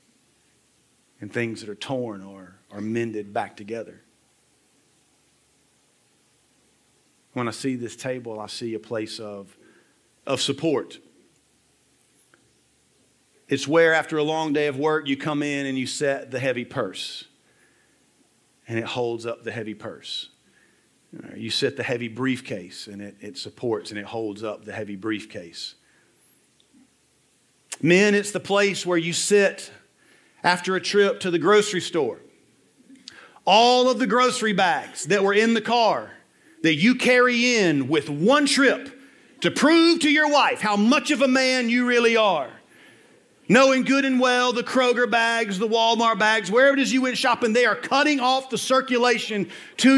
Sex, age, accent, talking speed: male, 40-59, American, 155 wpm